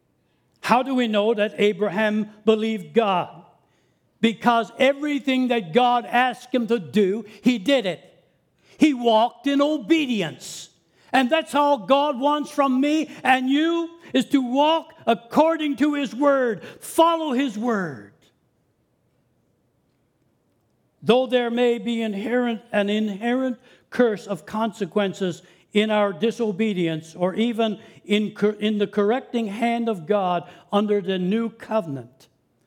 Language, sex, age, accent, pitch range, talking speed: English, male, 60-79, American, 205-265 Hz, 125 wpm